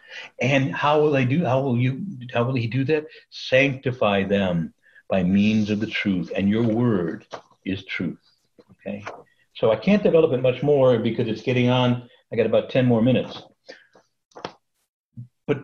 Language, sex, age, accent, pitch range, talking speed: English, male, 60-79, American, 110-160 Hz, 170 wpm